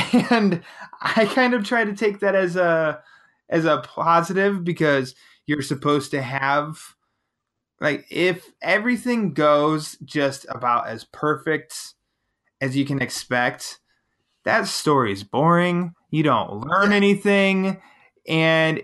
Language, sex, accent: English, male, American